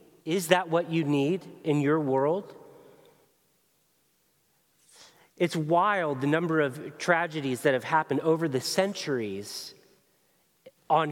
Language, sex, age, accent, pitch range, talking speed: English, male, 40-59, American, 140-175 Hz, 115 wpm